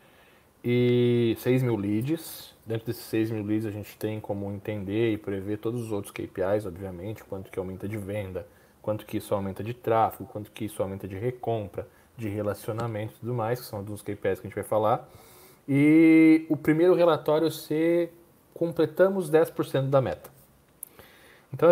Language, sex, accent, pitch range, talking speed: Portuguese, male, Brazilian, 110-150 Hz, 175 wpm